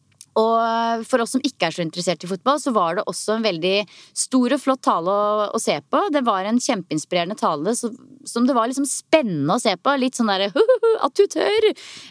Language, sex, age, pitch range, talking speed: English, female, 30-49, 190-245 Hz, 225 wpm